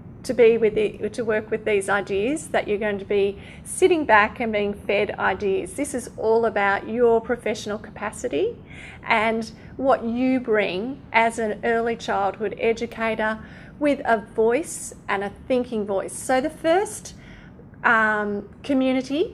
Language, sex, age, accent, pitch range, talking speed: English, female, 30-49, Australian, 210-260 Hz, 140 wpm